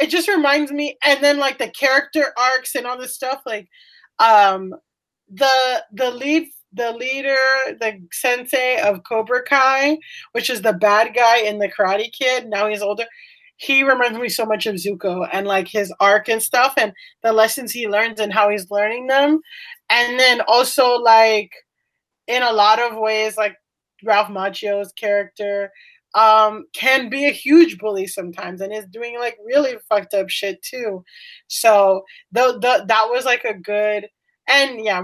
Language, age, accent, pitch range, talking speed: English, 20-39, American, 215-285 Hz, 170 wpm